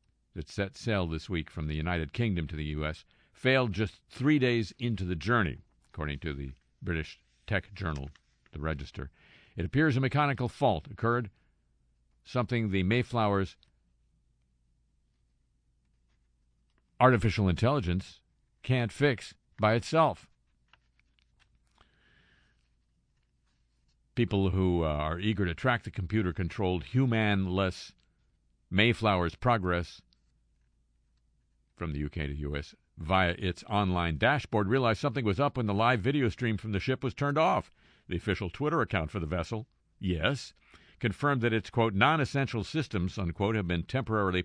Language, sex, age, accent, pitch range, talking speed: English, male, 50-69, American, 75-120 Hz, 130 wpm